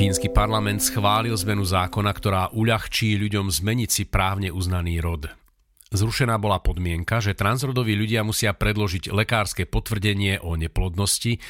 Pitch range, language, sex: 95-120 Hz, Slovak, male